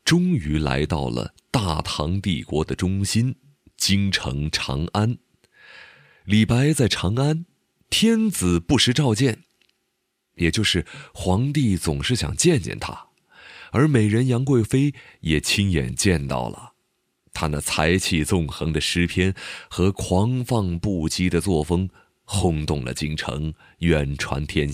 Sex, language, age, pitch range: male, Chinese, 30-49, 75-120 Hz